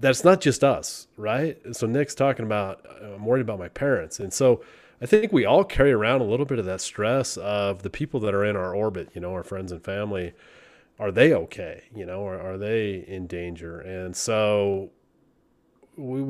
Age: 30-49